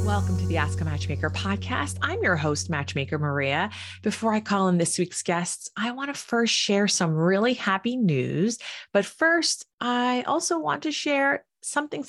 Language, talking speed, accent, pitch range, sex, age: English, 185 wpm, American, 150-195 Hz, female, 30-49